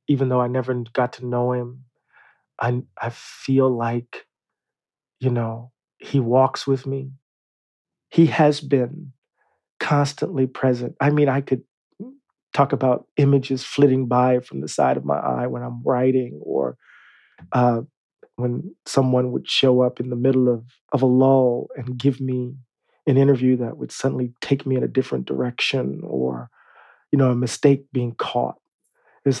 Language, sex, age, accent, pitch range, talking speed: English, male, 40-59, American, 125-145 Hz, 155 wpm